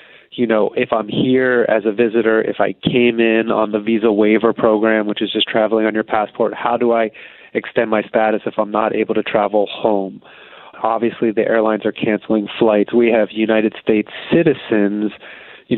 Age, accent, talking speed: 20-39, American, 185 wpm